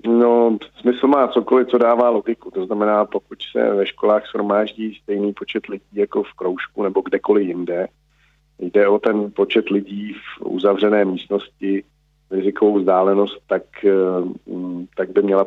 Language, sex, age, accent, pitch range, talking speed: Czech, male, 50-69, native, 95-120 Hz, 145 wpm